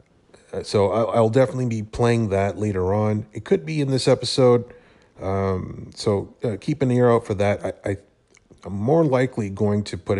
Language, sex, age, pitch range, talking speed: English, male, 30-49, 95-120 Hz, 190 wpm